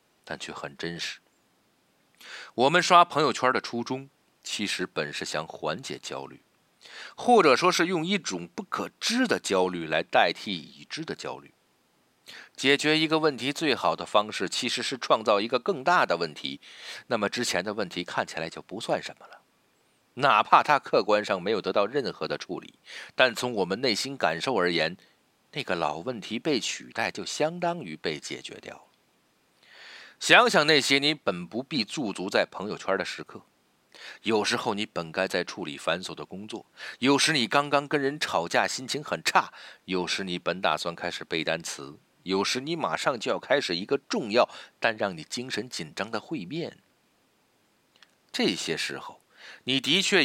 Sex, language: male, Chinese